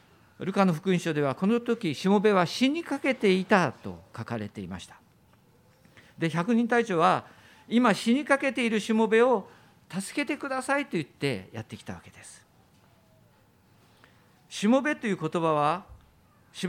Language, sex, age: Japanese, male, 50-69